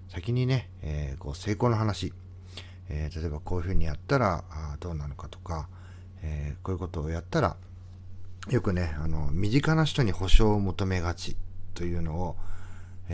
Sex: male